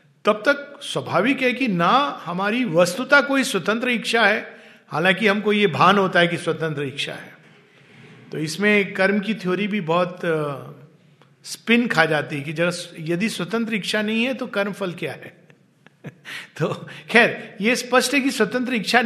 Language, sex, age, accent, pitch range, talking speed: Hindi, male, 50-69, native, 170-230 Hz, 170 wpm